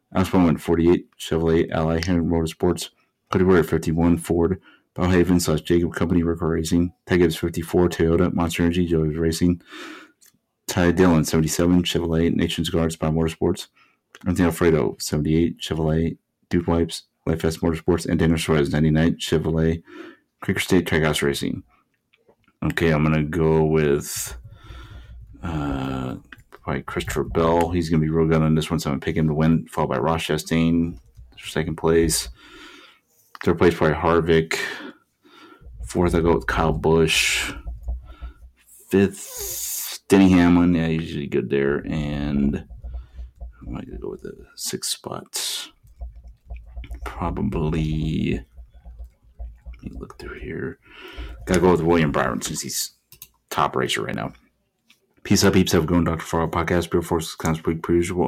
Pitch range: 75-85 Hz